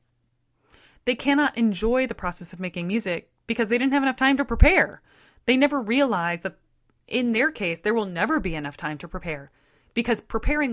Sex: female